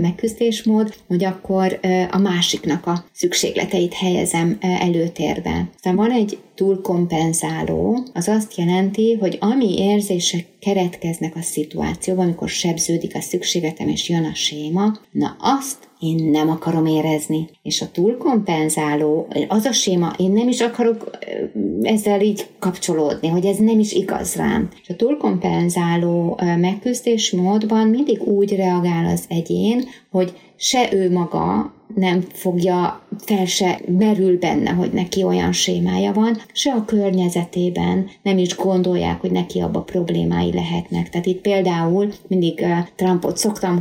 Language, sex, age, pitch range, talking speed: Hungarian, female, 30-49, 170-205 Hz, 135 wpm